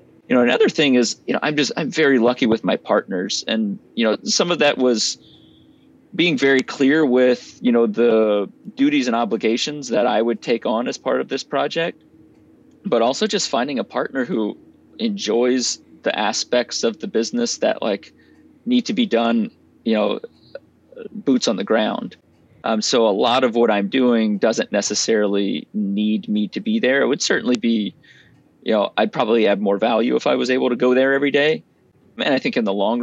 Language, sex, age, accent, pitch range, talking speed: English, male, 30-49, American, 105-145 Hz, 195 wpm